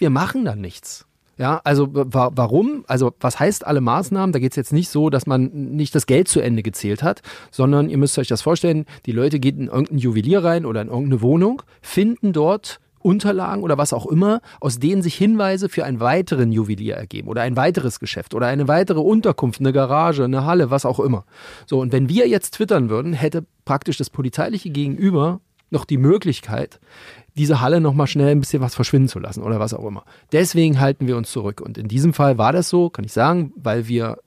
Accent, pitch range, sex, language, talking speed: German, 125-160 Hz, male, German, 215 wpm